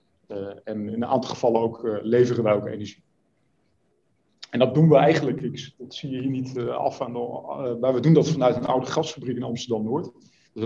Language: Dutch